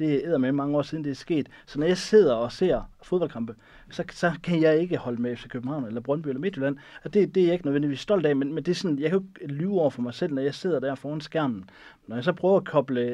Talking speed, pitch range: 295 wpm, 125-160 Hz